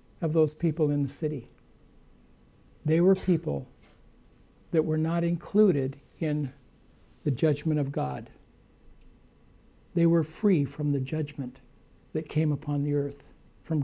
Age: 60-79